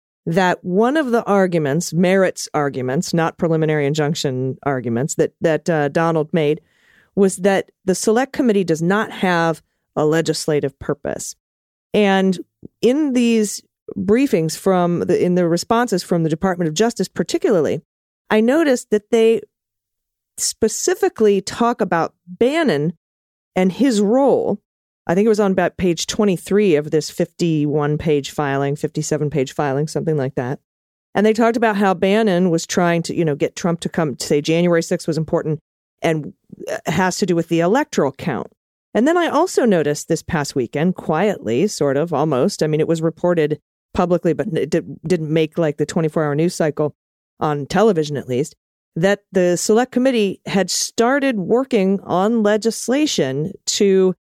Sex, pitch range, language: female, 155-210 Hz, English